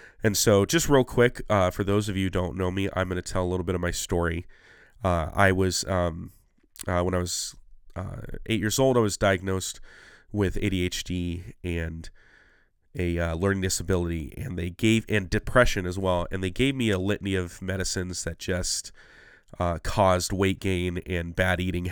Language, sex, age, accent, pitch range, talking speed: English, male, 30-49, American, 90-105 Hz, 190 wpm